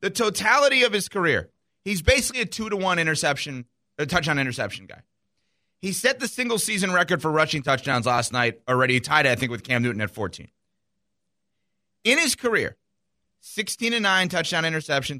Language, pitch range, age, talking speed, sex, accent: English, 125-185 Hz, 30-49, 175 wpm, male, American